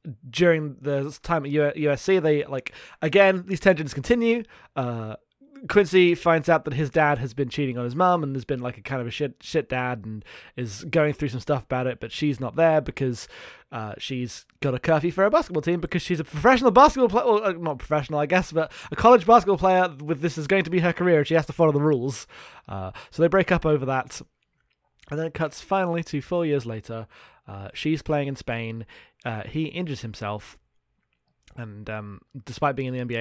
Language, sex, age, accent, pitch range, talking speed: English, male, 20-39, British, 125-175 Hz, 220 wpm